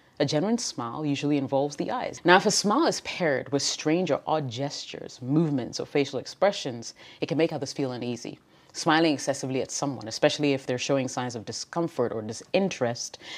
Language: English